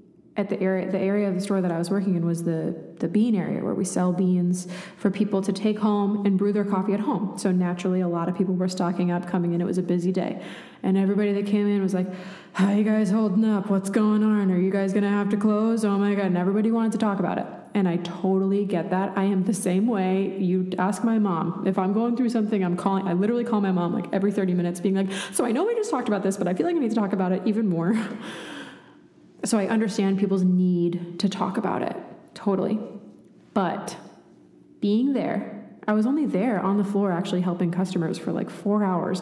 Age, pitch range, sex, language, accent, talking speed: 20-39, 185-215 Hz, female, English, American, 250 wpm